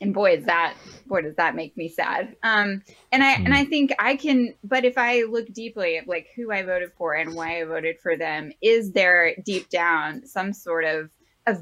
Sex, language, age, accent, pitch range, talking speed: female, English, 10-29, American, 170-225 Hz, 220 wpm